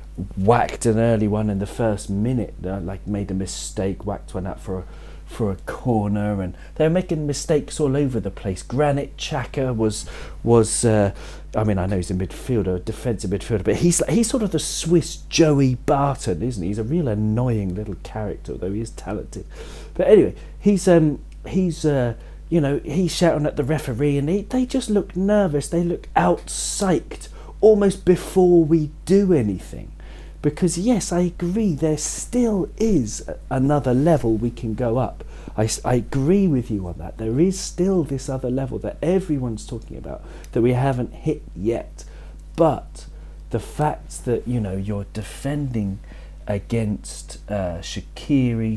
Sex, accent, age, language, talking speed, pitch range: male, British, 40-59, English, 170 wpm, 100-155 Hz